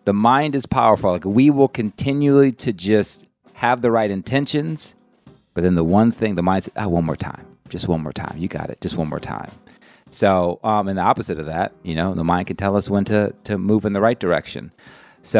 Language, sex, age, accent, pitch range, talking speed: English, male, 30-49, American, 85-110 Hz, 235 wpm